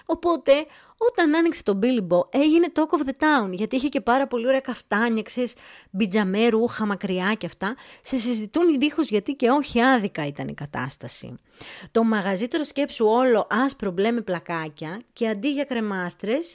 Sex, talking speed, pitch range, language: female, 160 wpm, 185-270 Hz, Greek